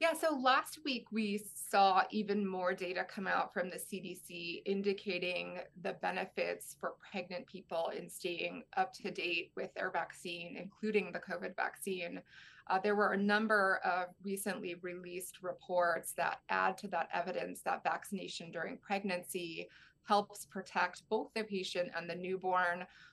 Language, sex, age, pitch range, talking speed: English, female, 20-39, 180-205 Hz, 150 wpm